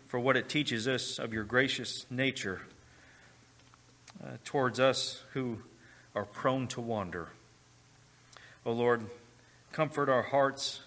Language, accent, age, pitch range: English, American, 40-59, 110-140 Hz